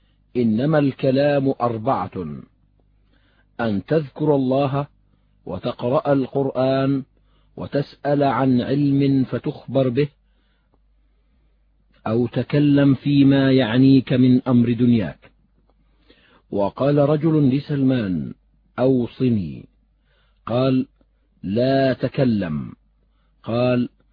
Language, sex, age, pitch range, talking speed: Arabic, male, 50-69, 120-145 Hz, 70 wpm